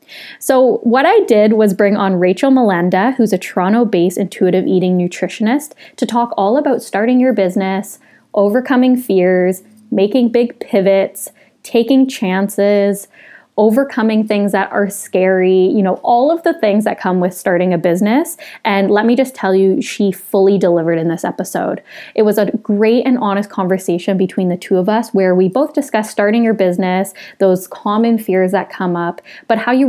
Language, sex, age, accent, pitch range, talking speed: English, female, 20-39, American, 185-235 Hz, 175 wpm